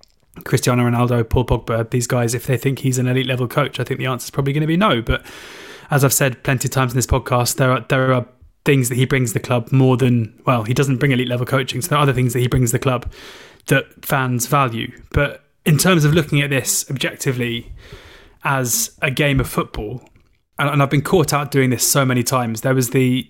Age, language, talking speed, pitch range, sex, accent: 20-39, English, 240 wpm, 125-145 Hz, male, British